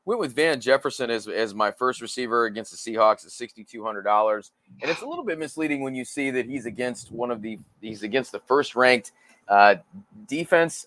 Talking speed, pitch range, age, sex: 215 wpm, 115-130 Hz, 30-49, male